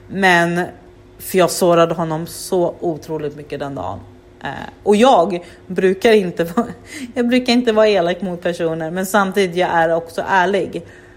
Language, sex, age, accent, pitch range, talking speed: Swedish, female, 30-49, native, 150-185 Hz, 135 wpm